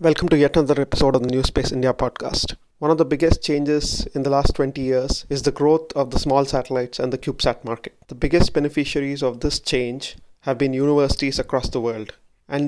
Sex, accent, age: male, Indian, 30-49